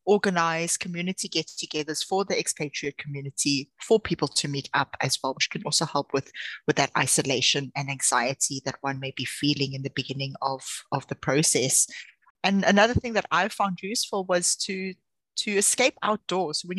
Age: 20-39